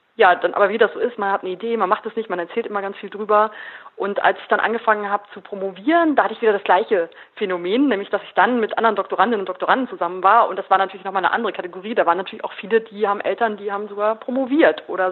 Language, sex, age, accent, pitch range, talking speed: German, female, 30-49, German, 200-250 Hz, 270 wpm